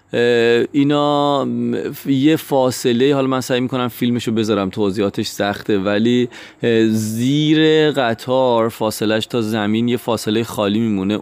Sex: male